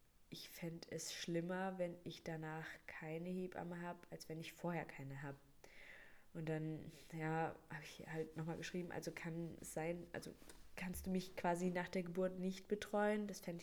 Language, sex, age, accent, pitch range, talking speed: German, female, 20-39, German, 160-185 Hz, 175 wpm